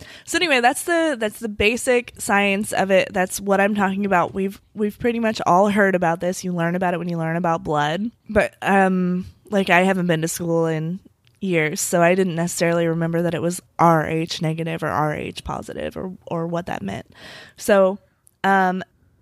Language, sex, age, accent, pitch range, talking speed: English, female, 20-39, American, 175-215 Hz, 195 wpm